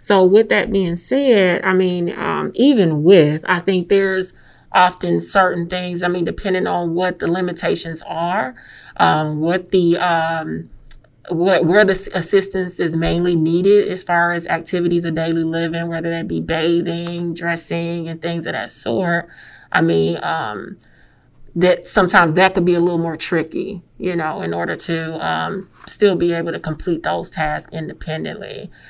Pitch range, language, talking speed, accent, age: 165-185 Hz, English, 160 wpm, American, 30-49